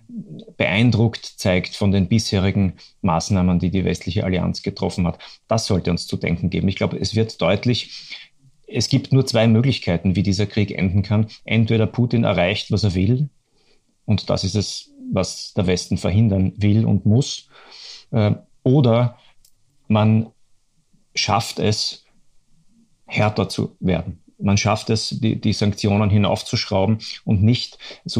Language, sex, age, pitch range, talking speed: German, male, 30-49, 105-125 Hz, 145 wpm